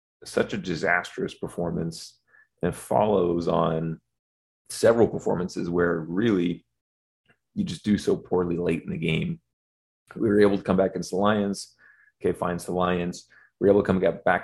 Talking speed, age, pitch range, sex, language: 165 wpm, 30-49, 85-95 Hz, male, English